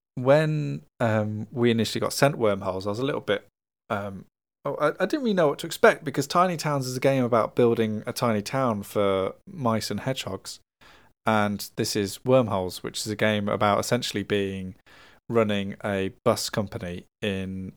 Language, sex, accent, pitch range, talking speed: English, male, British, 105-130 Hz, 175 wpm